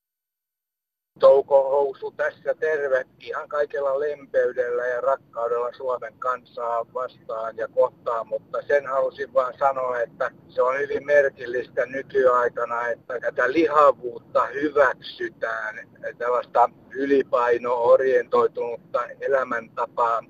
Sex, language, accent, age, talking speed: male, Finnish, native, 60-79, 90 wpm